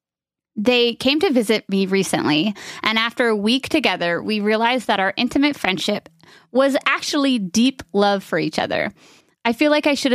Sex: female